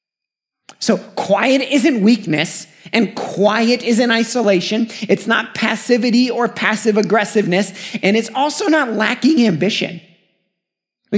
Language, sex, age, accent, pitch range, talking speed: English, male, 30-49, American, 185-235 Hz, 115 wpm